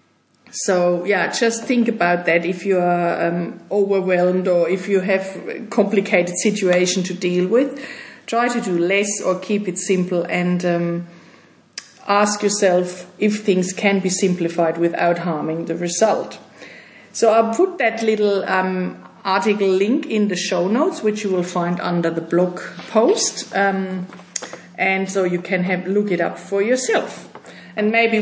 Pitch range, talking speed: 180-215 Hz, 160 wpm